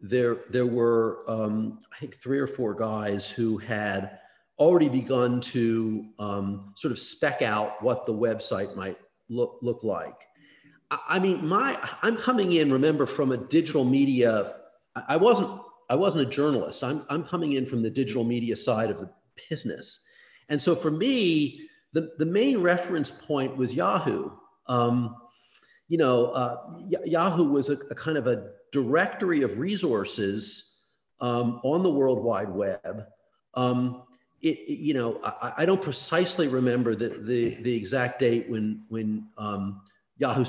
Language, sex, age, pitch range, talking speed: English, male, 40-59, 115-155 Hz, 160 wpm